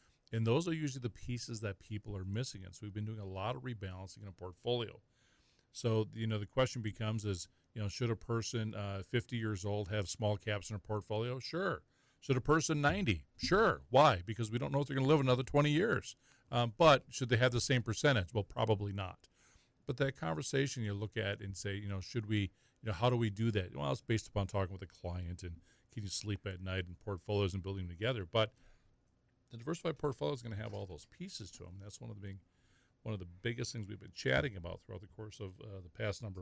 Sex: male